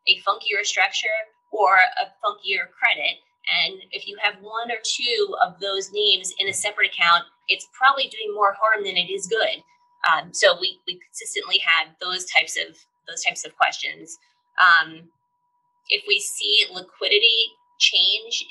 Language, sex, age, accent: English, female, 20-39, American